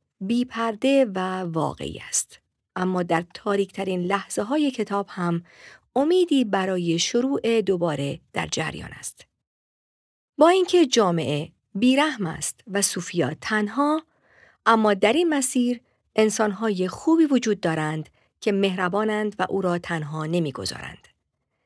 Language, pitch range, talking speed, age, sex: Persian, 175-240 Hz, 115 wpm, 40-59, female